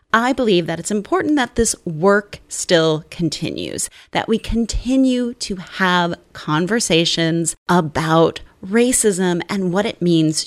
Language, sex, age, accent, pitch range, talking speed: English, female, 30-49, American, 165-220 Hz, 125 wpm